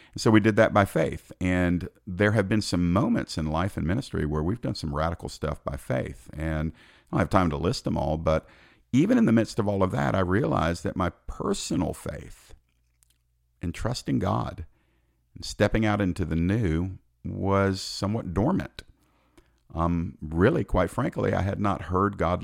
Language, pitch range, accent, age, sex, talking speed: English, 80-100 Hz, American, 50-69, male, 185 wpm